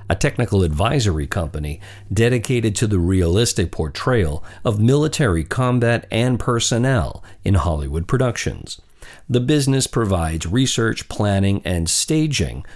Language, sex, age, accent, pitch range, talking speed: English, male, 50-69, American, 85-120 Hz, 115 wpm